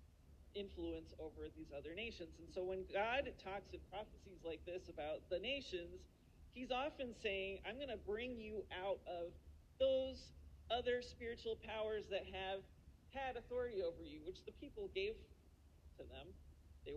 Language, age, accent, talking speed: English, 40-59, American, 155 wpm